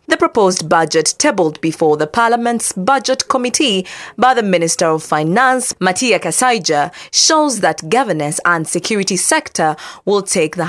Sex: female